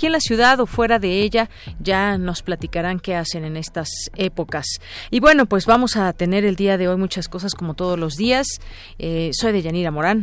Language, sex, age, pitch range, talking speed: Spanish, female, 40-59, 175-220 Hz, 210 wpm